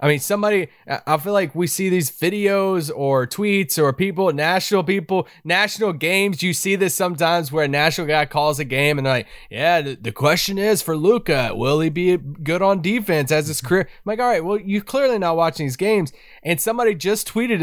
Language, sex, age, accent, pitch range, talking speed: English, male, 20-39, American, 150-205 Hz, 210 wpm